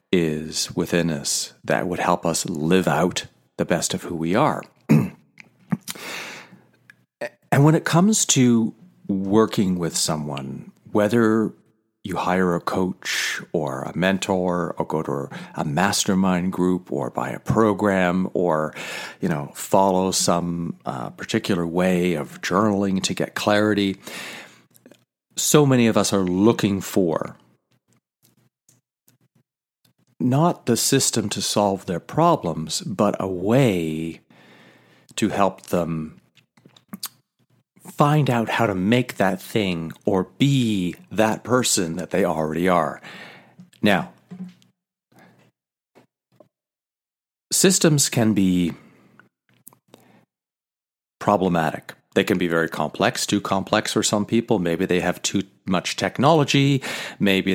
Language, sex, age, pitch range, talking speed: English, male, 40-59, 90-120 Hz, 115 wpm